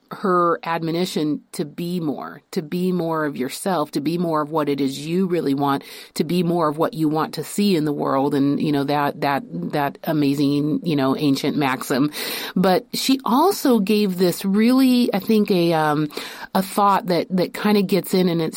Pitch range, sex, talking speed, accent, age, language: 160-210 Hz, female, 205 wpm, American, 30-49, English